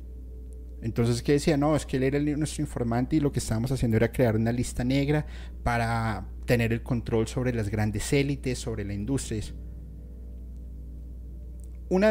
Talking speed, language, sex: 160 wpm, Spanish, male